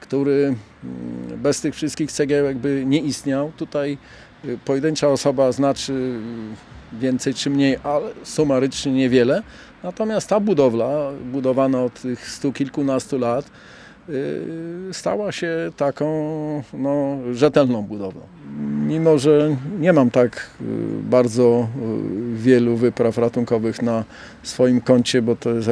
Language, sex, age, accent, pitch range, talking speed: Polish, male, 40-59, native, 120-145 Hz, 110 wpm